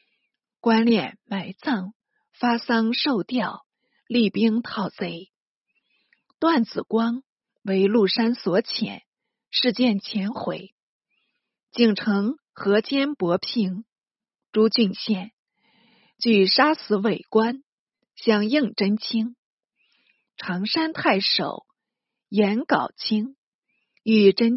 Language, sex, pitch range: Chinese, female, 205-255 Hz